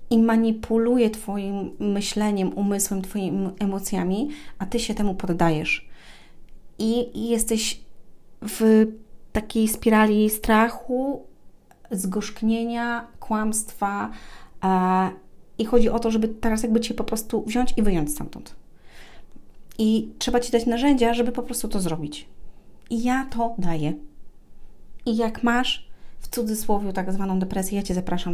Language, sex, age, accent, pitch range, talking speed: Polish, female, 30-49, native, 185-220 Hz, 125 wpm